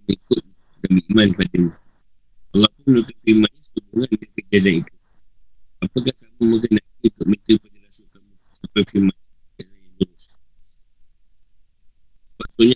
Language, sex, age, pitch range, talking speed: Malay, male, 50-69, 80-105 Hz, 120 wpm